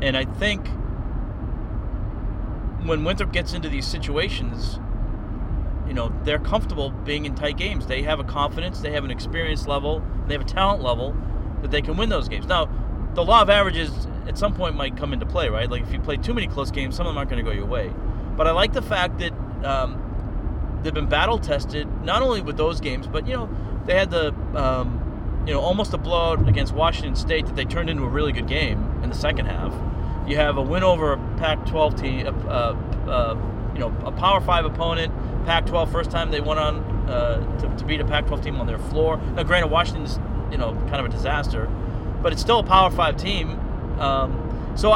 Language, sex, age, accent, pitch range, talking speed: English, male, 40-59, American, 100-130 Hz, 215 wpm